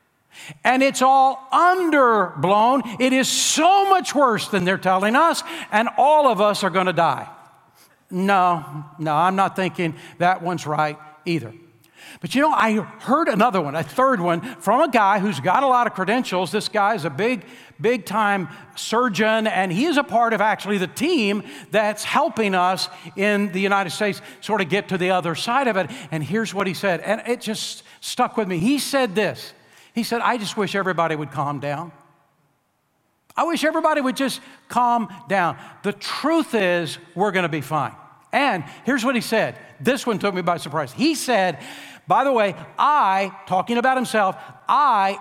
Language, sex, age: English, male, 60-79